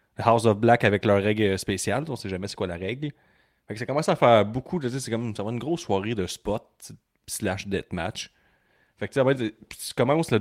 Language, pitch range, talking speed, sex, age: French, 100-120 Hz, 250 wpm, male, 30-49